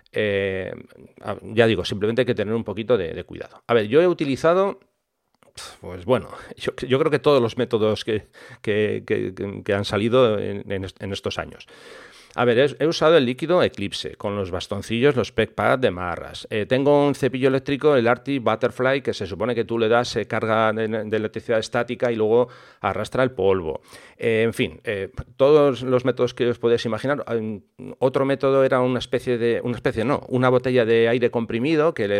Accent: Spanish